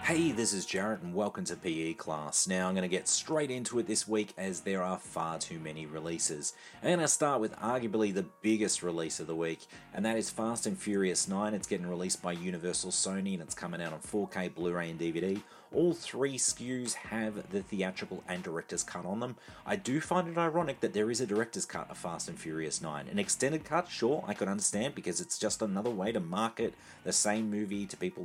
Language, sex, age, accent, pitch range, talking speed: English, male, 30-49, Australian, 90-115 Hz, 220 wpm